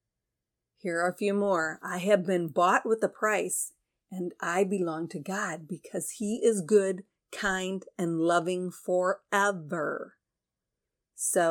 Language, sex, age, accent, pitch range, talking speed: English, female, 40-59, American, 175-210 Hz, 135 wpm